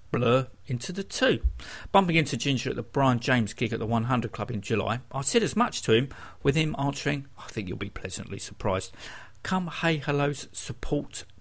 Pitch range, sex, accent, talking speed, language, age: 105-160 Hz, male, British, 195 wpm, English, 50-69